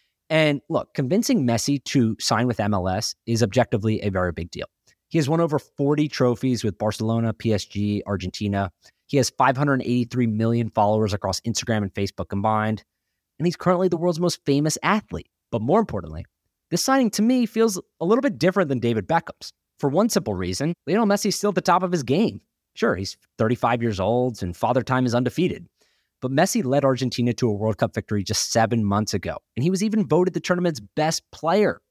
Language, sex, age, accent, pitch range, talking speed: English, male, 20-39, American, 105-165 Hz, 195 wpm